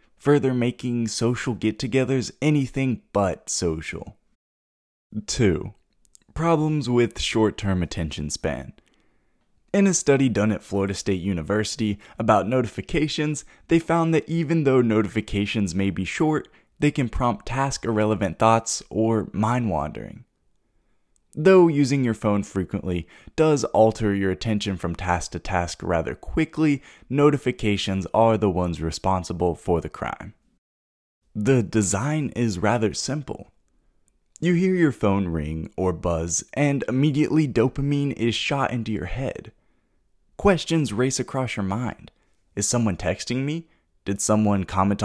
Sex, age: male, 20-39